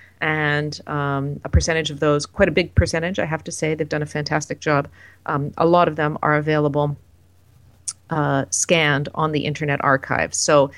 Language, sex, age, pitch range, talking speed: English, female, 40-59, 135-160 Hz, 185 wpm